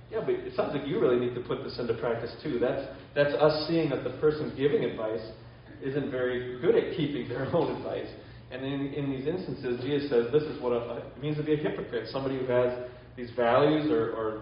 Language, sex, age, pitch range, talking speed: English, male, 30-49, 120-140 Hz, 235 wpm